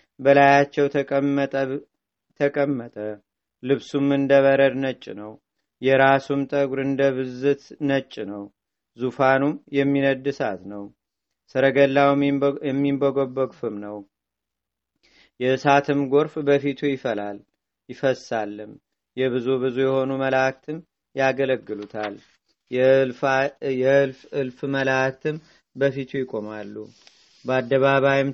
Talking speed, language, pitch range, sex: 75 wpm, Amharic, 130-140 Hz, male